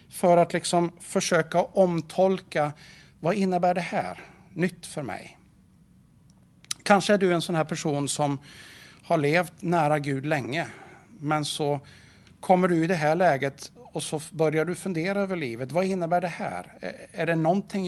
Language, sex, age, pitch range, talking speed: Swedish, male, 60-79, 140-175 Hz, 155 wpm